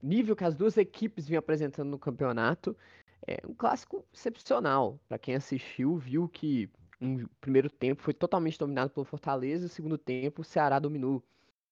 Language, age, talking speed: Portuguese, 20-39, 175 wpm